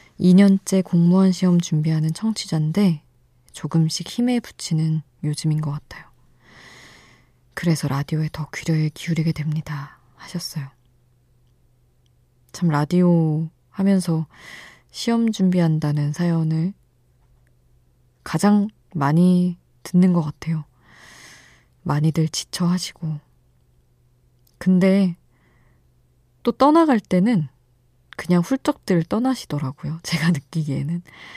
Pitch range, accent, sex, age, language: 140-180 Hz, native, female, 20-39, Korean